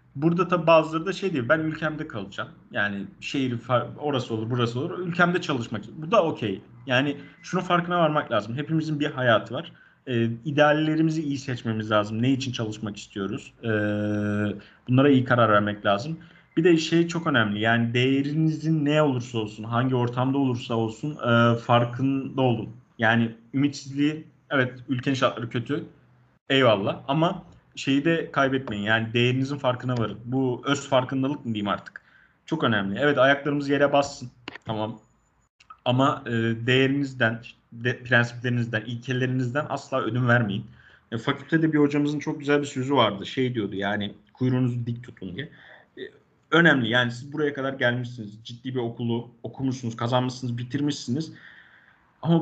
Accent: native